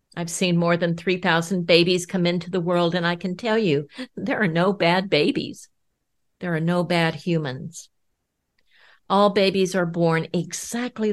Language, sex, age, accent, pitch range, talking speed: English, female, 50-69, American, 165-190 Hz, 160 wpm